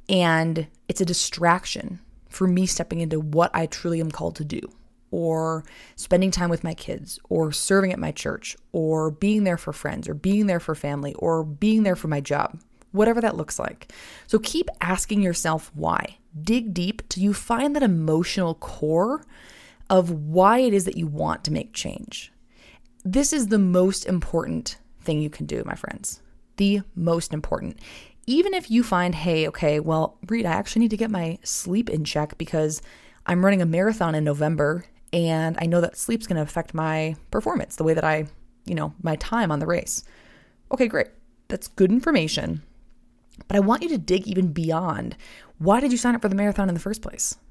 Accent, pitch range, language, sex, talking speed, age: American, 160-205 Hz, English, female, 195 wpm, 20-39